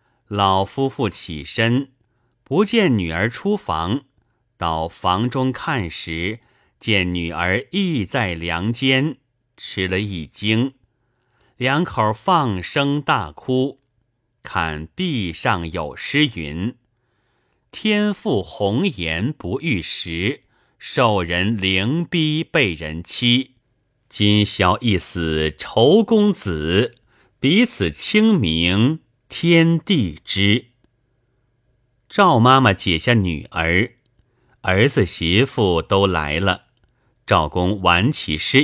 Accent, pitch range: native, 90-130 Hz